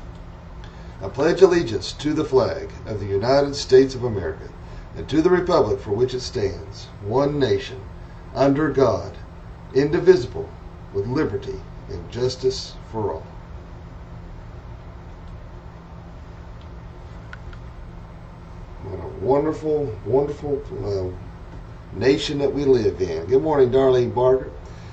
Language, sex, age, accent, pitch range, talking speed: English, male, 40-59, American, 95-125 Hz, 110 wpm